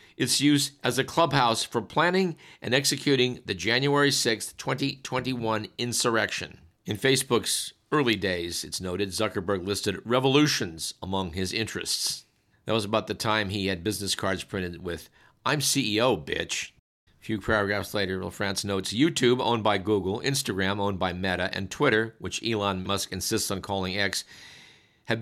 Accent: American